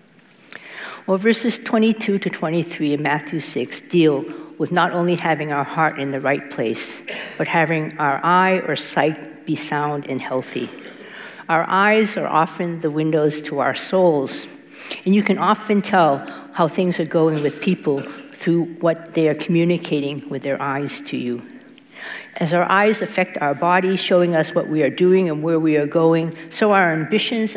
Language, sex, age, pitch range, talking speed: English, female, 50-69, 150-195 Hz, 170 wpm